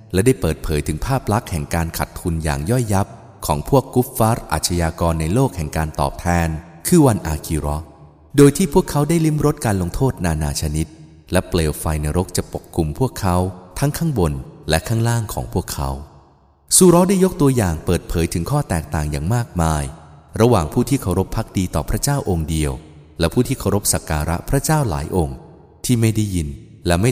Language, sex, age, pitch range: English, male, 20-39, 80-120 Hz